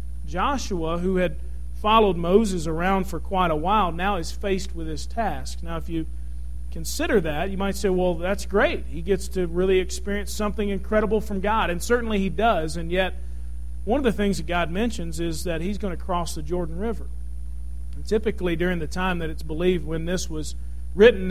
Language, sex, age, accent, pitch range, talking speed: English, male, 40-59, American, 165-215 Hz, 195 wpm